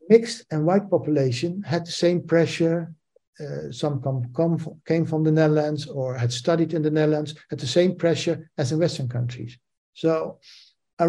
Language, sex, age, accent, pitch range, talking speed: English, male, 60-79, Dutch, 130-170 Hz, 175 wpm